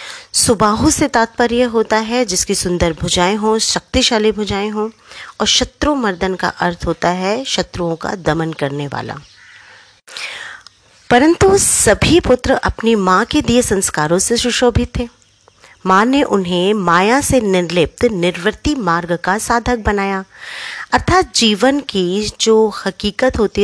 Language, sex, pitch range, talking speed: Hindi, female, 180-245 Hz, 130 wpm